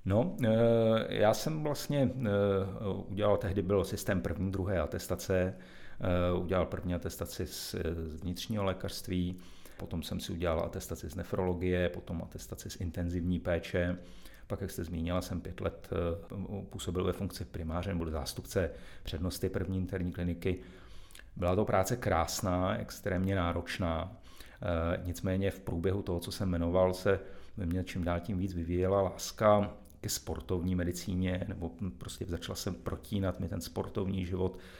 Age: 40-59